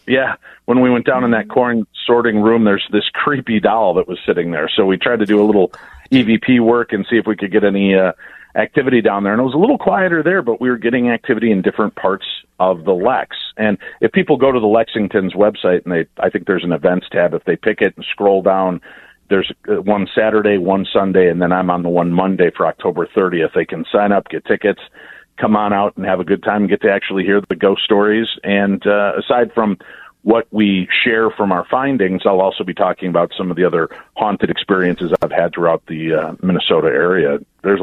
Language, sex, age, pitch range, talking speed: English, male, 50-69, 95-110 Hz, 230 wpm